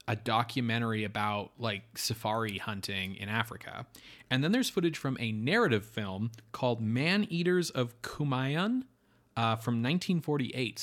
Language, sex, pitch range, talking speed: English, male, 105-125 Hz, 135 wpm